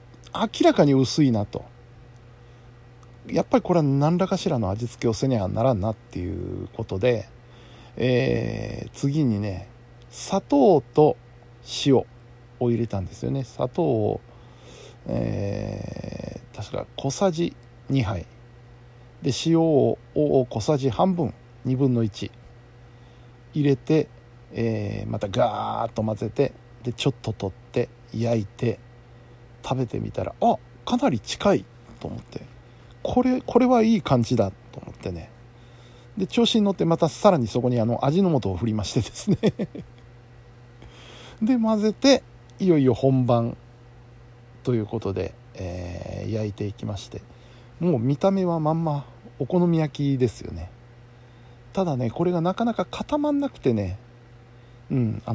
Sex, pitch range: male, 120-145 Hz